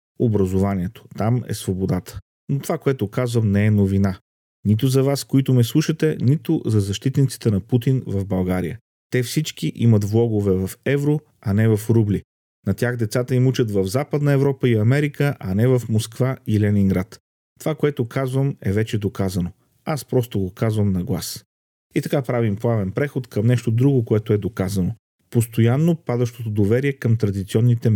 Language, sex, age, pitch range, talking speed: Bulgarian, male, 40-59, 100-130 Hz, 165 wpm